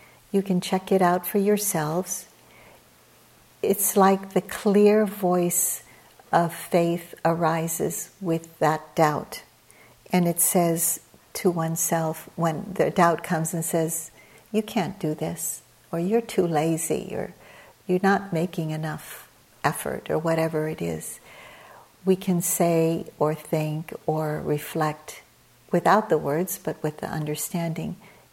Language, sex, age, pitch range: English, female, 60-79, 165-195 Hz